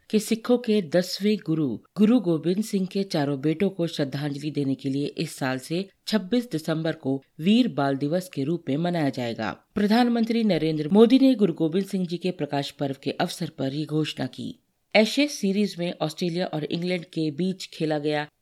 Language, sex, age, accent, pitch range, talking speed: Hindi, female, 50-69, native, 145-195 Hz, 185 wpm